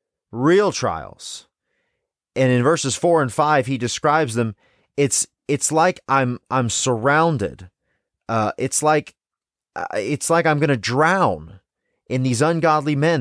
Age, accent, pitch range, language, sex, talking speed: 30-49, American, 105-150 Hz, English, male, 140 wpm